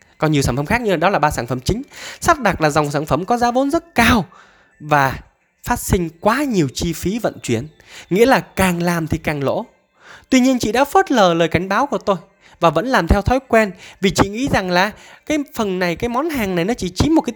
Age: 20-39